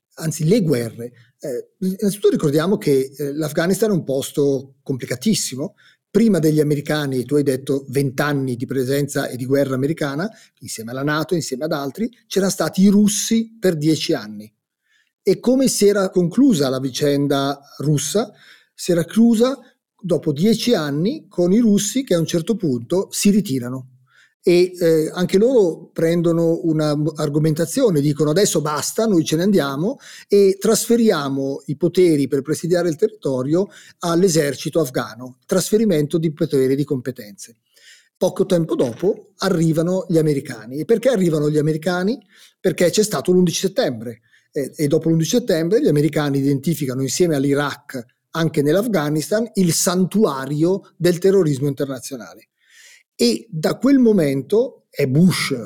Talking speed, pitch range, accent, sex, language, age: 140 wpm, 145-195 Hz, native, male, Italian, 40-59